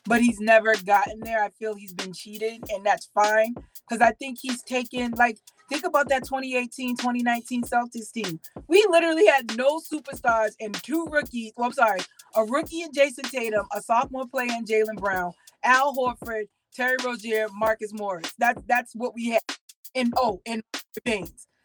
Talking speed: 170 wpm